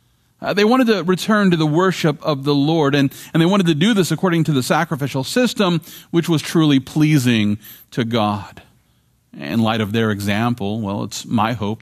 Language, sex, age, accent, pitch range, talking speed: English, male, 40-59, American, 115-160 Hz, 195 wpm